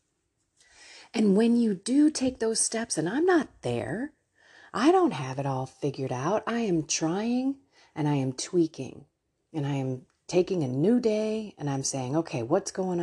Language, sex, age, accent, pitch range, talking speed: English, female, 40-59, American, 150-235 Hz, 175 wpm